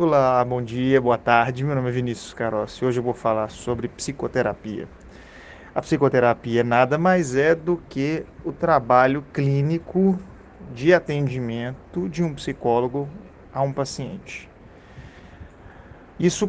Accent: Brazilian